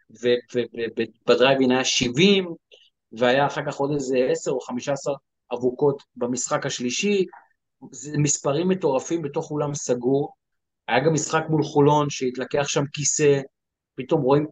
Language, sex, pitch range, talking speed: Hebrew, male, 130-185 Hz, 130 wpm